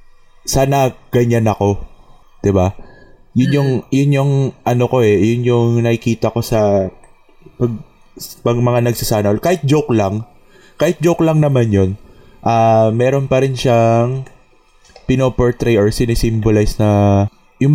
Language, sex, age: Filipino, male, 20-39